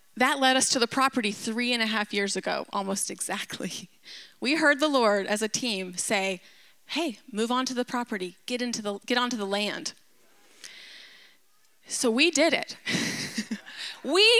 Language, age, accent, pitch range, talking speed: English, 30-49, American, 215-290 Hz, 165 wpm